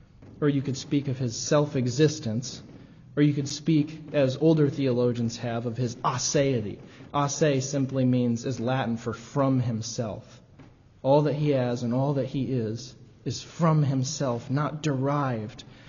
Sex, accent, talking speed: male, American, 150 wpm